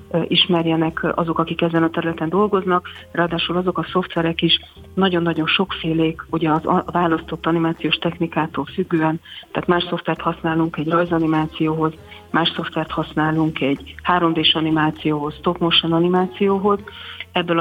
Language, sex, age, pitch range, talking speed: Hungarian, female, 40-59, 160-175 Hz, 125 wpm